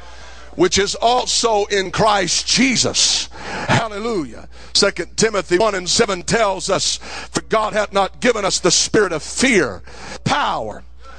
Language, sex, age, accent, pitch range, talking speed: English, male, 50-69, American, 160-210 Hz, 135 wpm